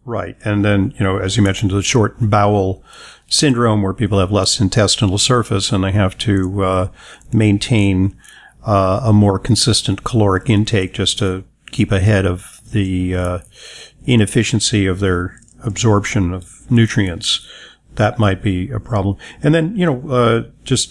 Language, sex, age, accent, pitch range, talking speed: English, male, 50-69, American, 100-125 Hz, 155 wpm